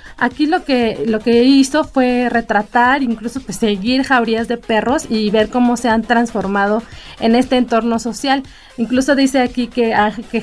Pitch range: 210-245 Hz